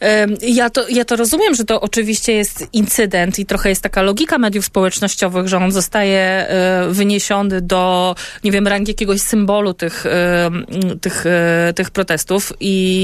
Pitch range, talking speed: 180-220 Hz, 145 wpm